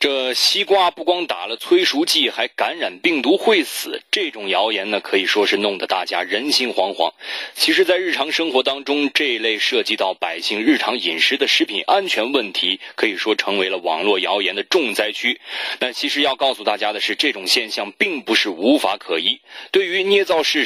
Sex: male